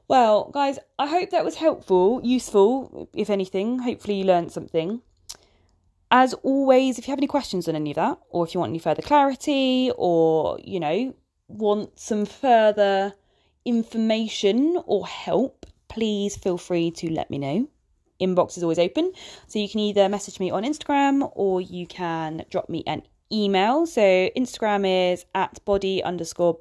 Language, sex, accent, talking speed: English, female, British, 165 wpm